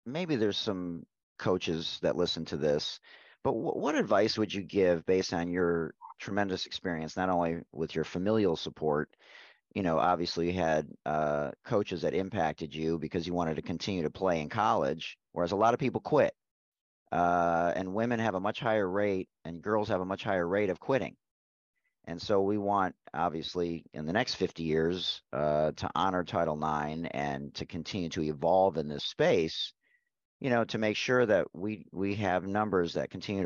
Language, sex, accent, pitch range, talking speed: English, male, American, 80-105 Hz, 185 wpm